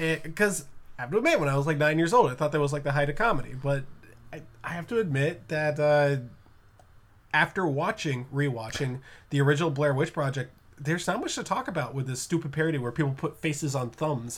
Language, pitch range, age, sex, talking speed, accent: English, 140-170 Hz, 20-39, male, 220 wpm, American